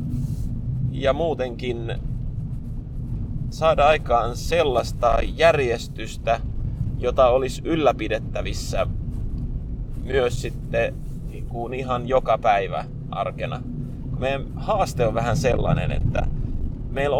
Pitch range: 125-145 Hz